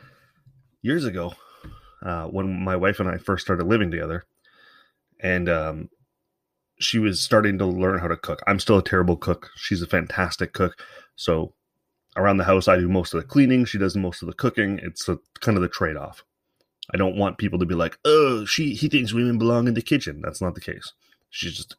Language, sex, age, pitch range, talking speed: English, male, 30-49, 90-115 Hz, 210 wpm